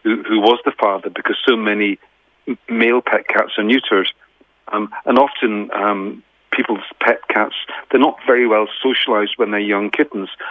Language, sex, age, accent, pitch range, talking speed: English, male, 40-59, British, 105-130 Hz, 165 wpm